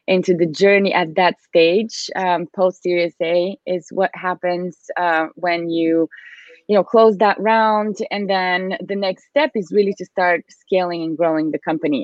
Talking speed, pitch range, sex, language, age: 170 wpm, 170-200 Hz, female, English, 20-39